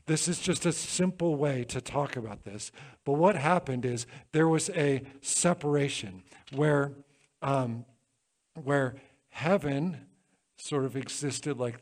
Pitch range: 130-165 Hz